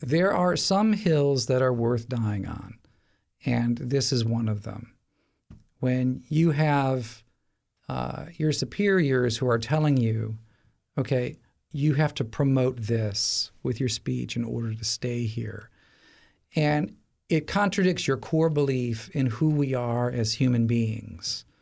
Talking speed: 145 wpm